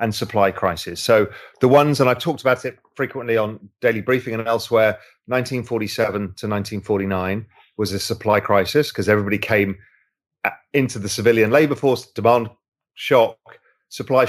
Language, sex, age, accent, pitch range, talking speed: English, male, 30-49, British, 100-125 Hz, 145 wpm